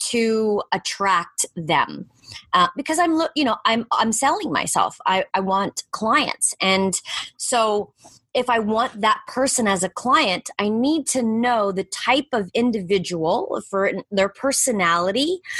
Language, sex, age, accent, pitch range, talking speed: English, female, 20-39, American, 185-240 Hz, 140 wpm